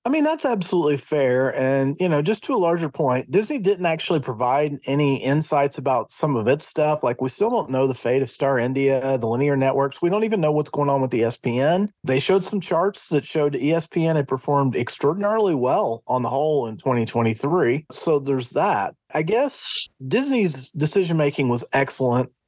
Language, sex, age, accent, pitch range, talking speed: English, male, 40-59, American, 135-185 Hz, 190 wpm